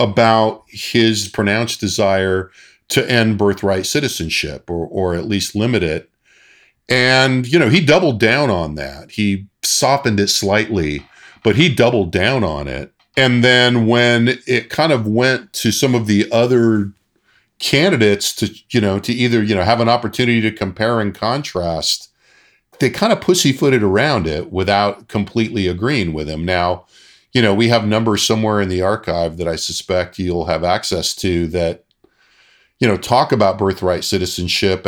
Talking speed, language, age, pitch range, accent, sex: 160 wpm, English, 40-59, 90-115 Hz, American, male